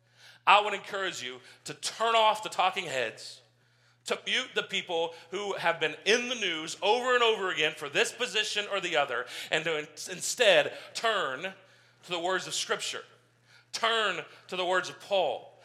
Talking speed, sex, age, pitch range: 175 wpm, male, 40-59, 165-205 Hz